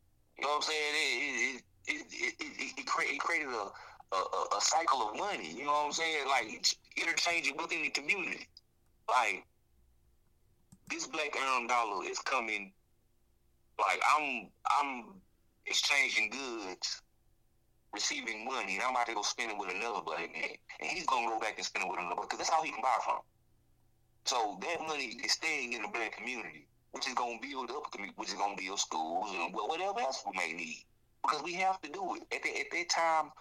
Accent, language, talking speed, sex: American, English, 185 wpm, male